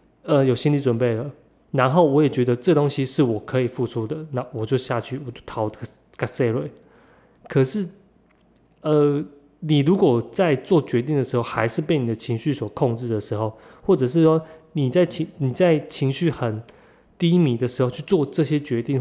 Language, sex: Chinese, male